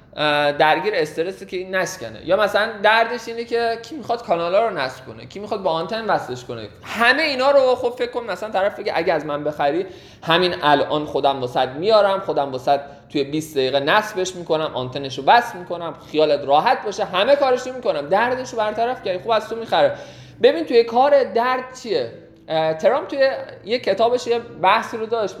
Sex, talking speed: male, 185 wpm